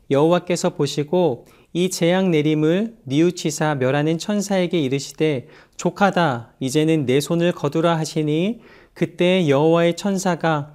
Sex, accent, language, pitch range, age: male, native, Korean, 140-185 Hz, 40-59